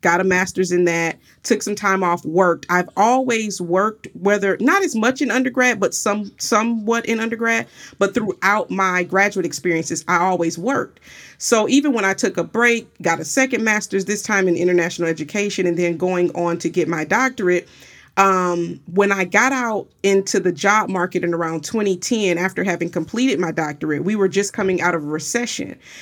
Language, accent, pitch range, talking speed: English, American, 175-210 Hz, 185 wpm